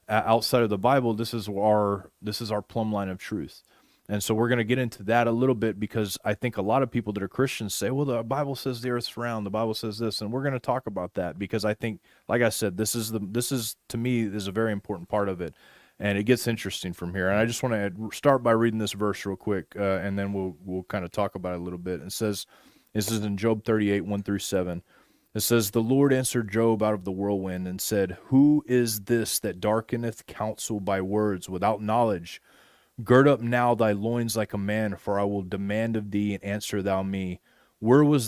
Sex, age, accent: male, 30-49, American